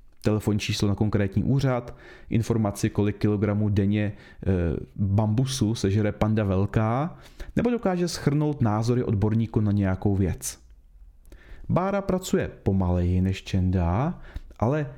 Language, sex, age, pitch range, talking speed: Czech, male, 30-49, 95-145 Hz, 110 wpm